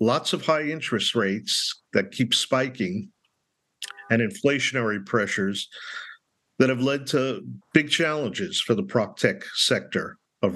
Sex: male